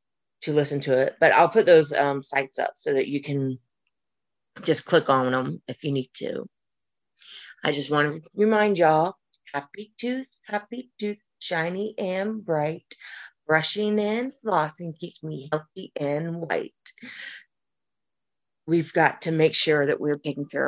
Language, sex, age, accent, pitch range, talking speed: English, female, 30-49, American, 145-195 Hz, 150 wpm